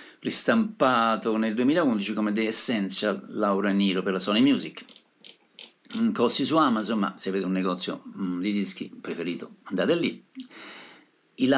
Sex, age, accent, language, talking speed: male, 50-69, native, Italian, 140 wpm